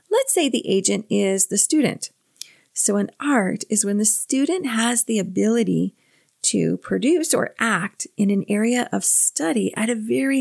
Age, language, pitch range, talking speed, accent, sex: 40-59, English, 200-275 Hz, 165 wpm, American, female